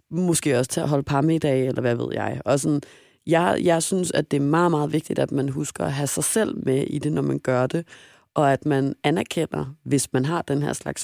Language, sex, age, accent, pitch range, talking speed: Danish, female, 30-49, native, 130-150 Hz, 255 wpm